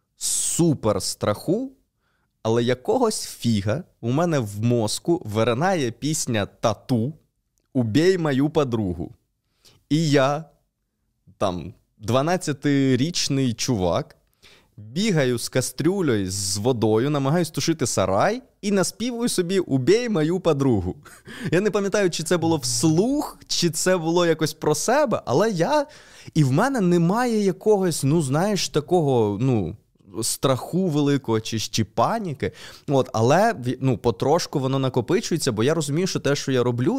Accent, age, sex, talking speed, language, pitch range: native, 20-39, male, 125 wpm, Ukrainian, 110-155 Hz